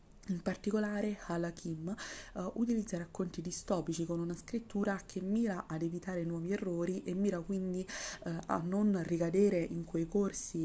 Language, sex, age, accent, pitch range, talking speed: Italian, female, 20-39, native, 165-200 Hz, 145 wpm